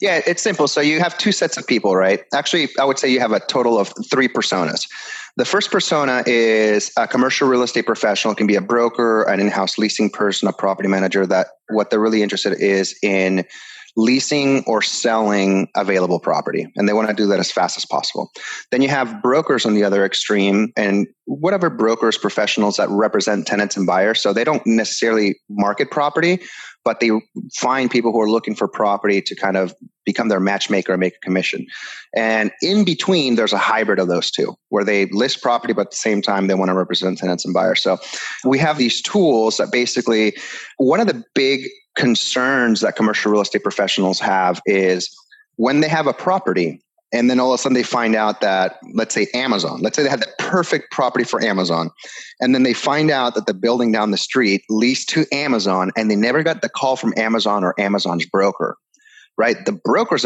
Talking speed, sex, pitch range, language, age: 205 wpm, male, 100-130 Hz, English, 30-49